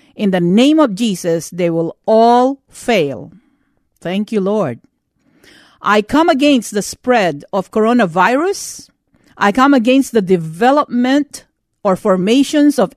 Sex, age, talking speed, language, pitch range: female, 50-69, 125 wpm, English, 200-280 Hz